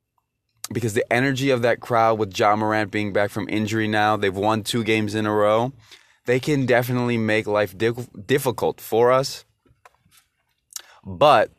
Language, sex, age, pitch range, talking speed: English, male, 20-39, 100-120 Hz, 160 wpm